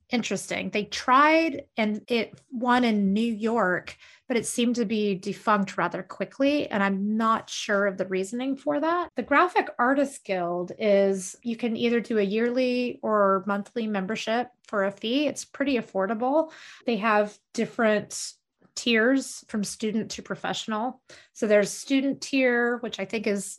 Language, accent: English, American